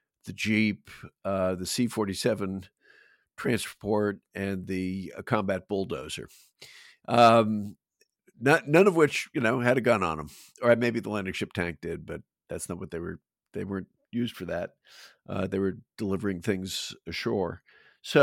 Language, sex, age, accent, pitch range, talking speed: English, male, 50-69, American, 95-120 Hz, 150 wpm